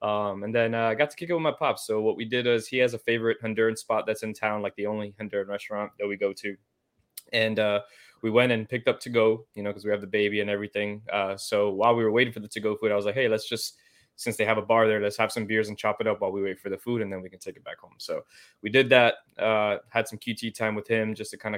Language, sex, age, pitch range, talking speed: English, male, 20-39, 105-115 Hz, 310 wpm